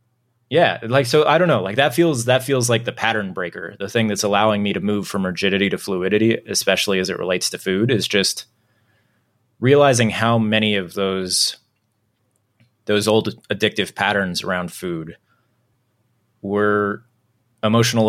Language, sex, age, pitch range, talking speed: English, male, 20-39, 100-120 Hz, 155 wpm